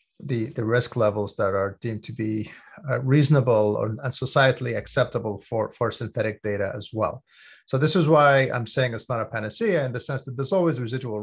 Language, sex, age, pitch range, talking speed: English, male, 30-49, 110-140 Hz, 205 wpm